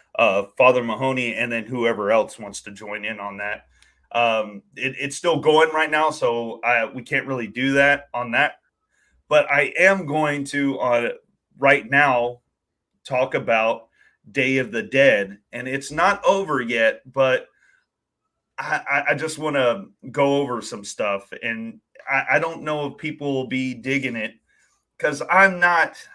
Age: 30-49